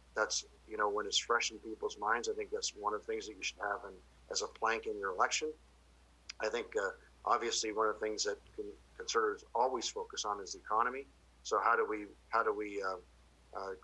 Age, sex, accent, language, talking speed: 50-69, male, American, English, 225 wpm